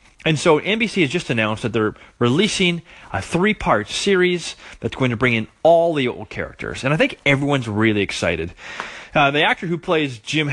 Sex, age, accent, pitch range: male, 30-49, American, 115-175 Hz